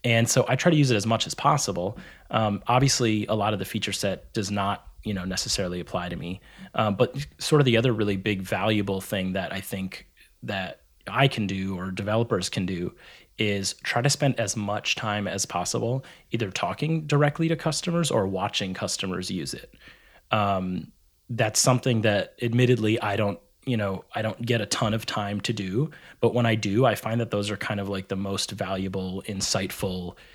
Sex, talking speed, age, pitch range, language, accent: male, 200 wpm, 30-49, 100-120 Hz, English, American